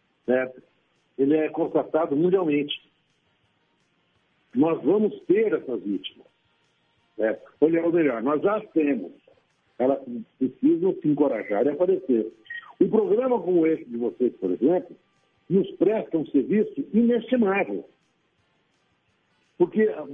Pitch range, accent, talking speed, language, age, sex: 145-235 Hz, Brazilian, 105 wpm, Portuguese, 60-79, male